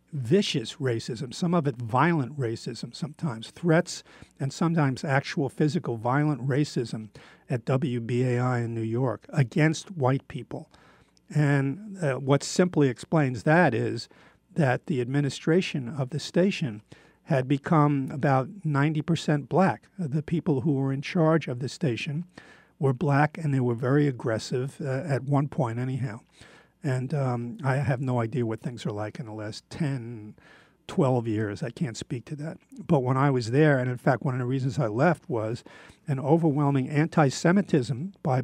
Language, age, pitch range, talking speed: English, 50-69, 125-155 Hz, 160 wpm